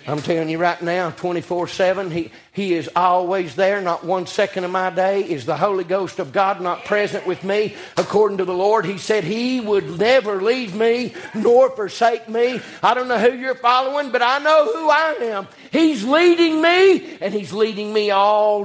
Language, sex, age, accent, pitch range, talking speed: English, male, 50-69, American, 150-200 Hz, 195 wpm